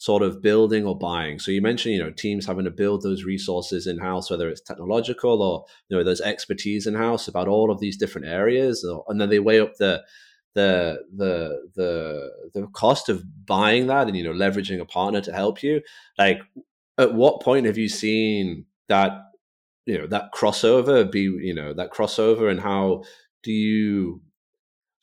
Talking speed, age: 185 wpm, 30-49